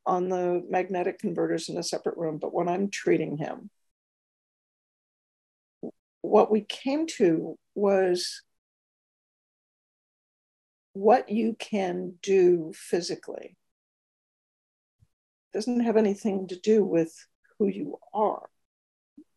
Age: 60-79